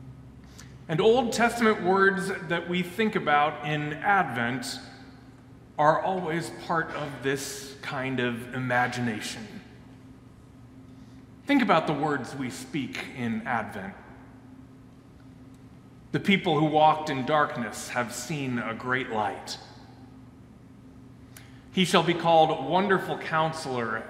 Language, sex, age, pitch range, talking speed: English, male, 30-49, 130-170 Hz, 105 wpm